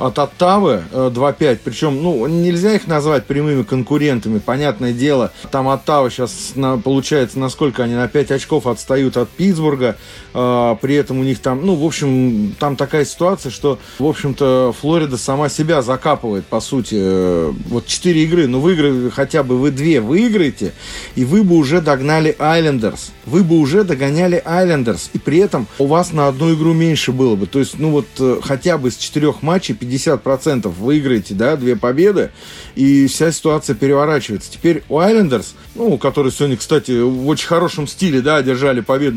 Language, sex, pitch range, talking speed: English, male, 130-165 Hz, 170 wpm